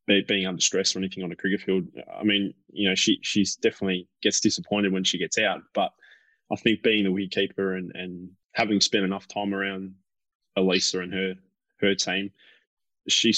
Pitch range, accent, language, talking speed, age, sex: 95-100 Hz, Australian, English, 185 wpm, 20-39, male